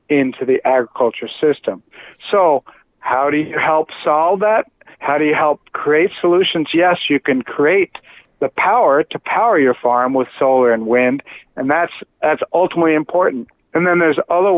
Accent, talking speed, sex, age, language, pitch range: American, 165 wpm, male, 60-79, English, 140-195 Hz